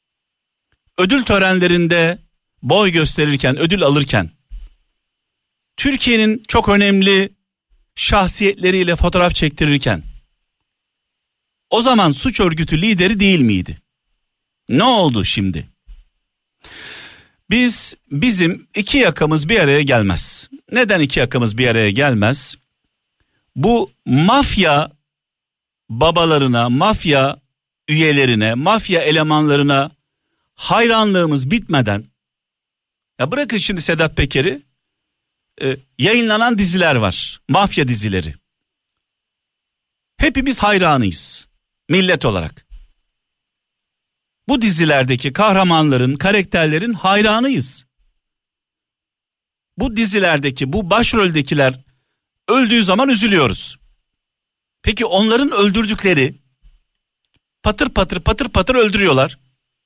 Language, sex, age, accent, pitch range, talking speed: Turkish, male, 50-69, native, 135-205 Hz, 80 wpm